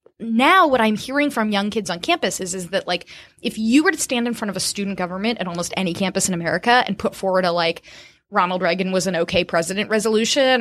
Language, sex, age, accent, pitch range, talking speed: English, female, 20-39, American, 185-240 Hz, 240 wpm